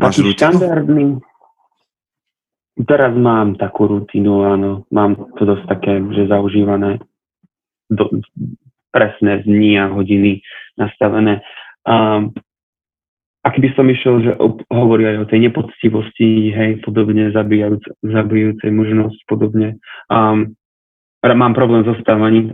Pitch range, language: 105-115 Hz, Slovak